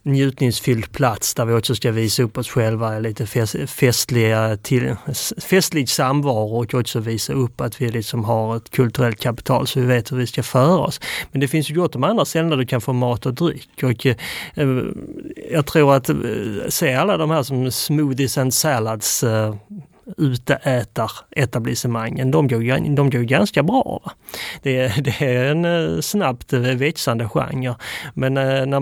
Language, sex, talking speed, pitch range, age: Swedish, male, 170 wpm, 120-145 Hz, 30-49